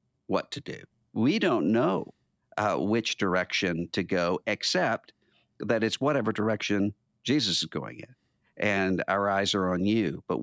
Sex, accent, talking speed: male, American, 155 wpm